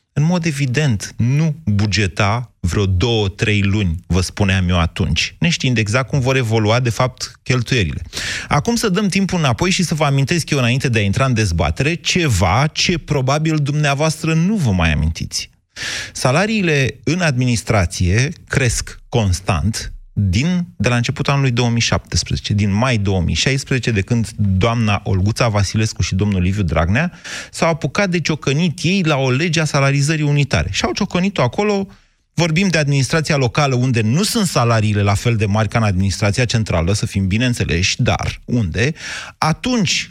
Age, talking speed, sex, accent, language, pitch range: 30-49, 155 wpm, male, native, Romanian, 110-155 Hz